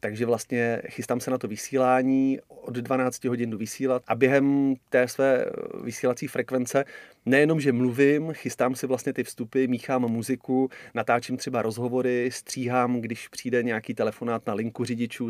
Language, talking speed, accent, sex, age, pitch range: Czech, 155 wpm, native, male, 30-49, 120-130 Hz